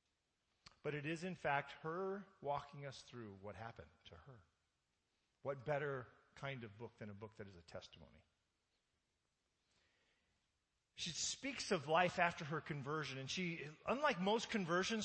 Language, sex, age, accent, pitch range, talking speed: English, male, 40-59, American, 130-180 Hz, 150 wpm